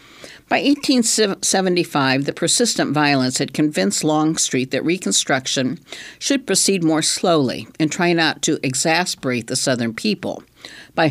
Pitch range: 135-180 Hz